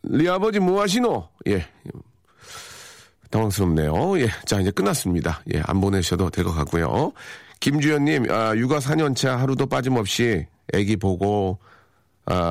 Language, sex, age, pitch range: Korean, male, 40-59, 95-130 Hz